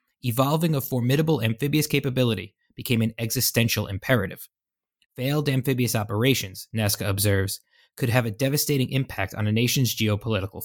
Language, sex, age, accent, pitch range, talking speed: English, male, 20-39, American, 110-135 Hz, 130 wpm